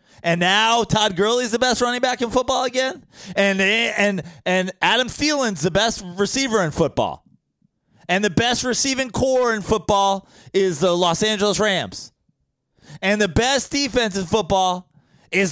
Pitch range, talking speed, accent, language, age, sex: 175-220 Hz, 160 wpm, American, English, 20-39, male